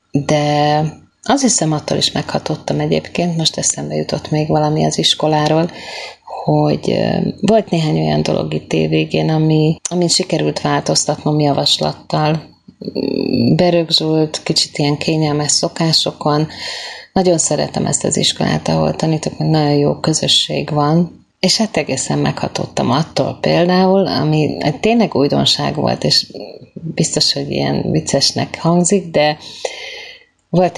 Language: Hungarian